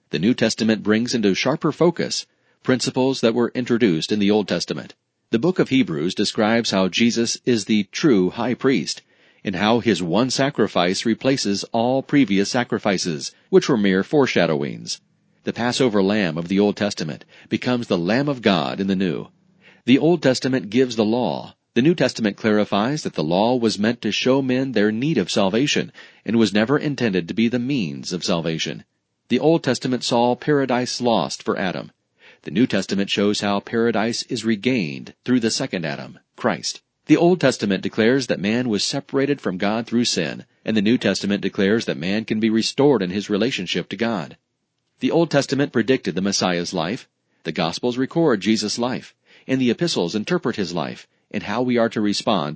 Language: English